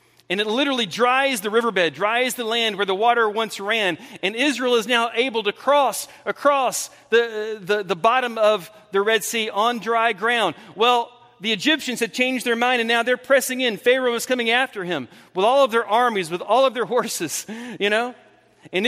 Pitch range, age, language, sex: 195-255 Hz, 40-59, English, male